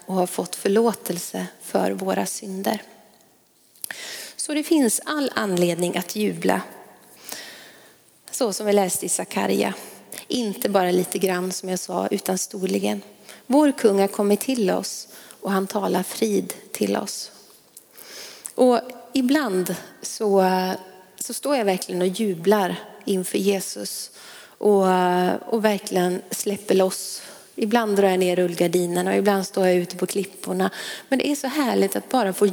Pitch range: 185-230 Hz